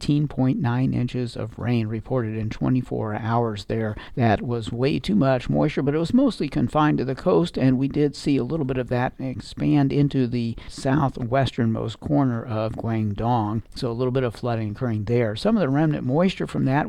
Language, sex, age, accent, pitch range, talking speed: English, male, 60-79, American, 110-135 Hz, 190 wpm